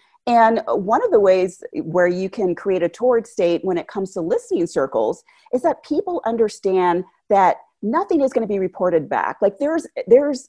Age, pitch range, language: 40-59, 165-260 Hz, English